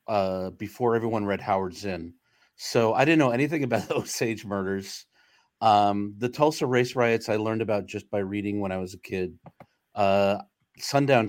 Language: English